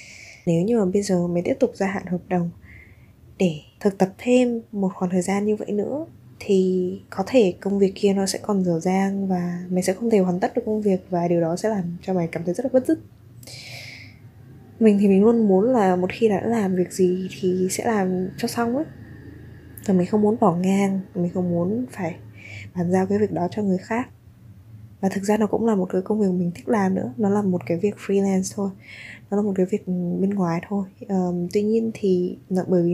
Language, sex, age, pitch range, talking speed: Vietnamese, female, 20-39, 170-205 Hz, 235 wpm